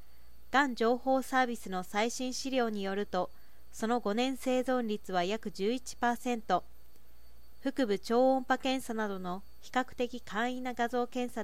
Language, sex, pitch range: Japanese, female, 195-250 Hz